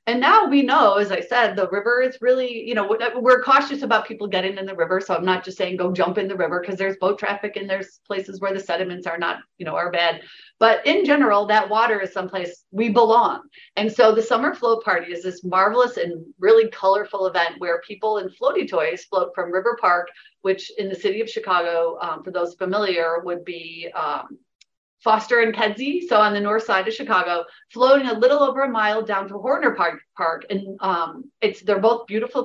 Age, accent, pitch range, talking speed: 40-59, American, 185-240 Hz, 220 wpm